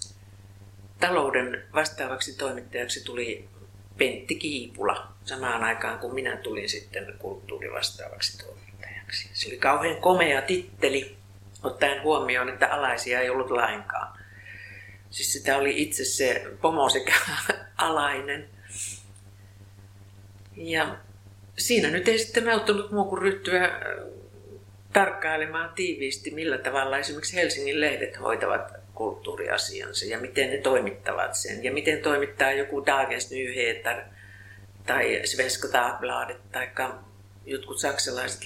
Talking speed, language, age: 105 wpm, Finnish, 50-69